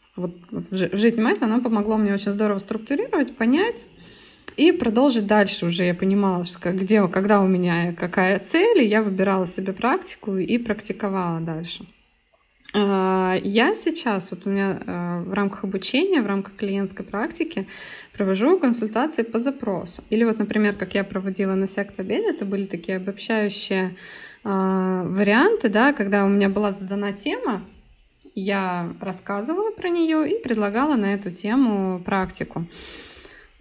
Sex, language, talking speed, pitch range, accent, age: female, Russian, 140 wpm, 190-235 Hz, native, 20-39